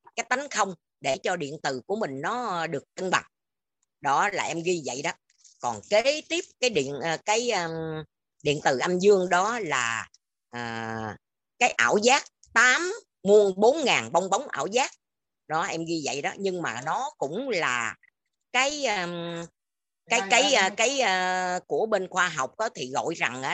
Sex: female